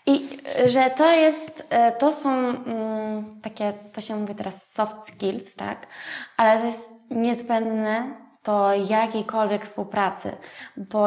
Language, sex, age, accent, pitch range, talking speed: Polish, female, 20-39, native, 195-230 Hz, 120 wpm